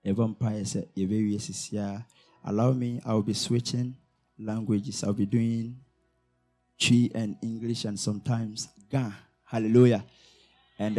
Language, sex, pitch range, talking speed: English, male, 105-140 Hz, 105 wpm